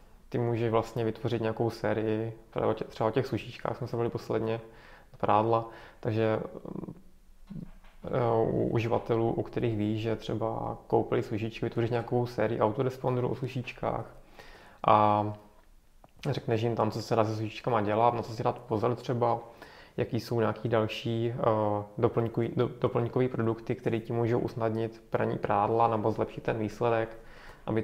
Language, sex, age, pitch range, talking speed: Czech, male, 20-39, 110-120 Hz, 140 wpm